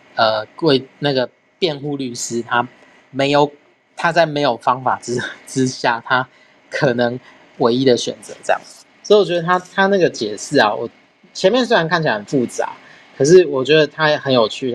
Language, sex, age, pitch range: Chinese, male, 30-49, 120-150 Hz